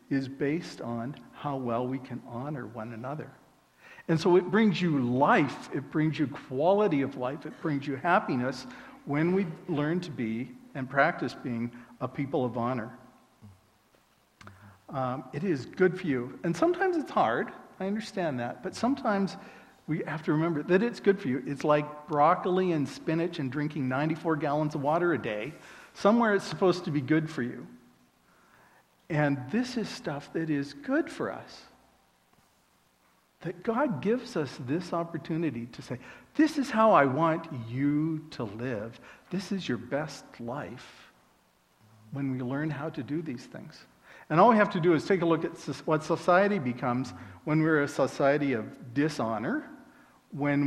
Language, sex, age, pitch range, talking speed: English, male, 50-69, 130-180 Hz, 170 wpm